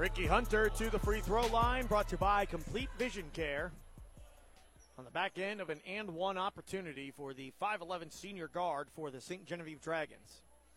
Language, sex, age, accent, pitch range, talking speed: English, male, 30-49, American, 175-215 Hz, 180 wpm